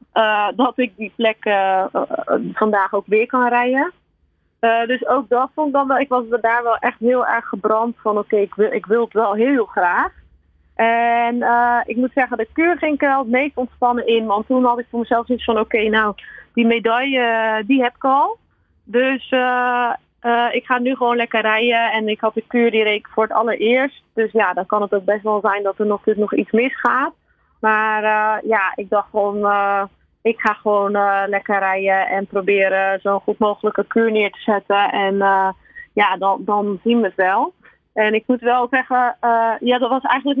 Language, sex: Dutch, female